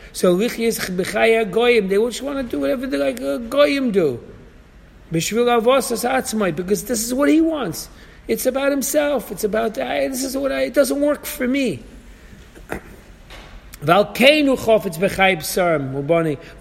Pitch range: 160-235 Hz